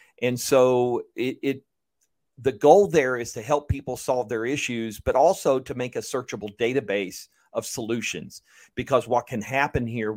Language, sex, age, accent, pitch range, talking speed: English, male, 50-69, American, 110-130 Hz, 165 wpm